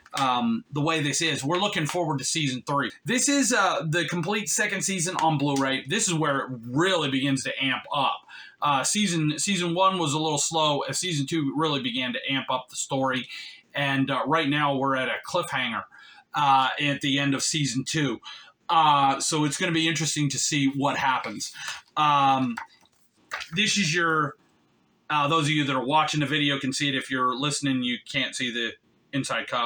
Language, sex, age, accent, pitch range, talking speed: English, male, 30-49, American, 135-165 Hz, 200 wpm